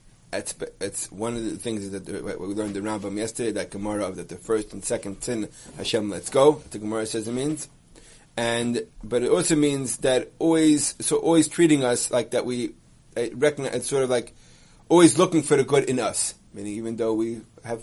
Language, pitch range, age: English, 110-140 Hz, 30-49